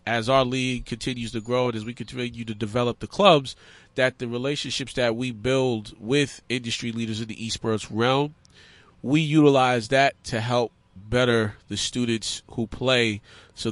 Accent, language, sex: American, English, male